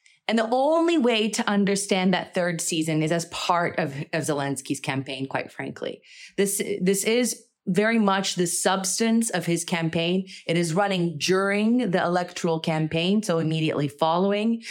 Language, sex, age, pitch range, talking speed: English, female, 30-49, 160-205 Hz, 155 wpm